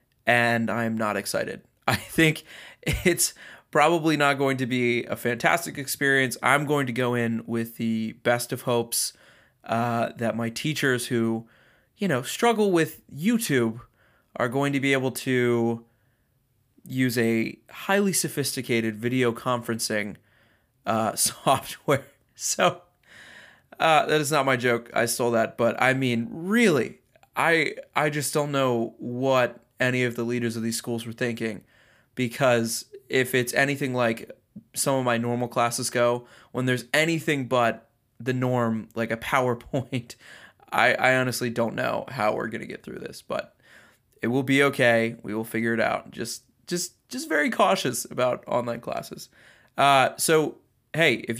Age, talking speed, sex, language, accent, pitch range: 20-39, 155 wpm, male, English, American, 115-135 Hz